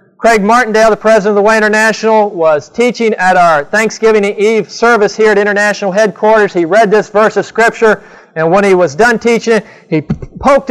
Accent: American